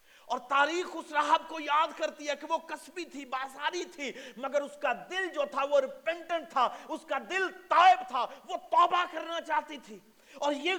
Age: 40-59